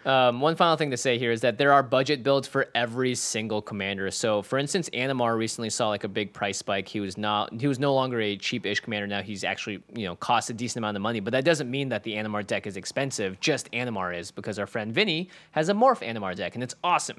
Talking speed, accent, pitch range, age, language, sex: 260 wpm, American, 105-135 Hz, 20-39, English, male